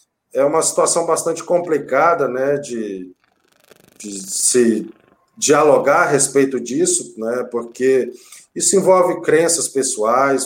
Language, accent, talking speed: Portuguese, Brazilian, 110 wpm